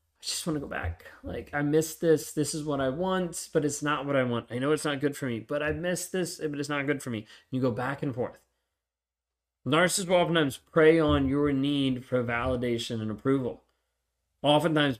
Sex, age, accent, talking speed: male, 30-49, American, 220 wpm